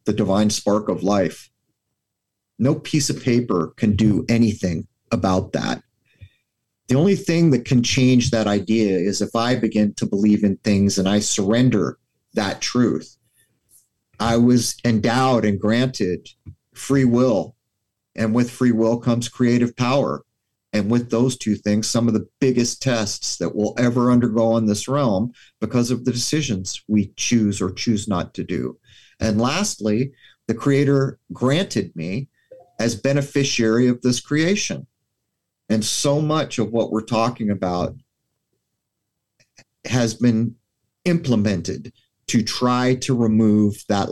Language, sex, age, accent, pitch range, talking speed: English, male, 40-59, American, 105-125 Hz, 140 wpm